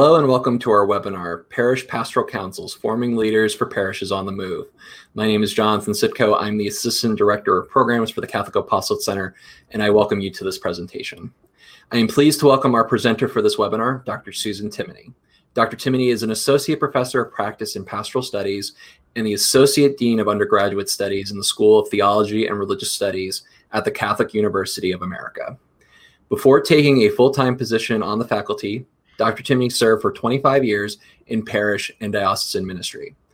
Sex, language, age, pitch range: male, English, 20-39, 105-130 Hz